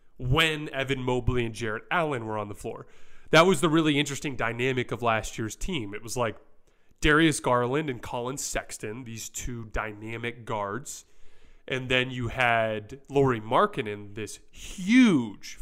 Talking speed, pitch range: 155 wpm, 115-145 Hz